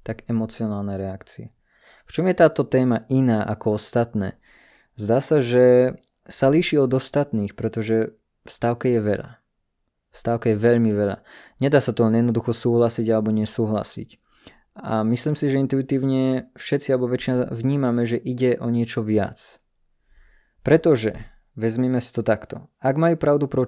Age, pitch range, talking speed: 20-39, 110-130 Hz, 145 wpm